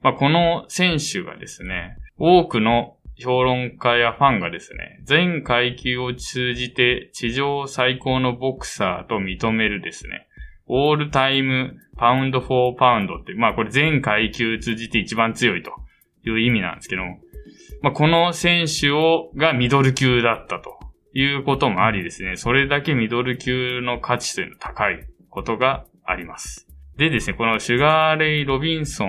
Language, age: Japanese, 20-39